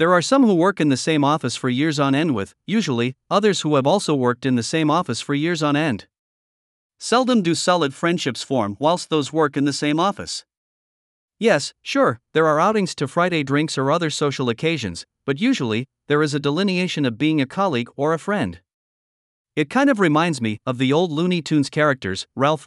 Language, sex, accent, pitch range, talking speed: English, male, American, 135-175 Hz, 205 wpm